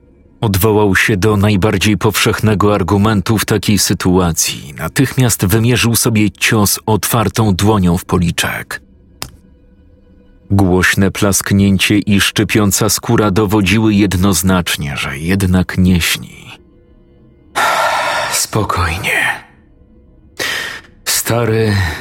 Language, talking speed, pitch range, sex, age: Polish, 80 wpm, 90-110 Hz, male, 40-59